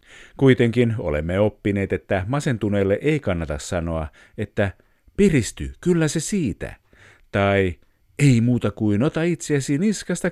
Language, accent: Finnish, native